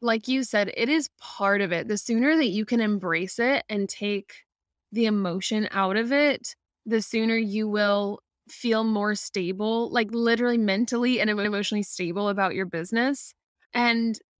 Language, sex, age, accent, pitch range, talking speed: English, female, 10-29, American, 200-230 Hz, 165 wpm